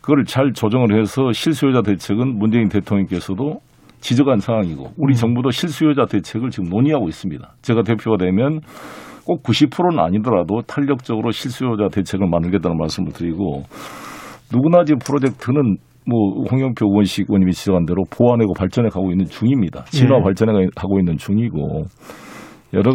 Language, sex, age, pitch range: Korean, male, 50-69, 100-135 Hz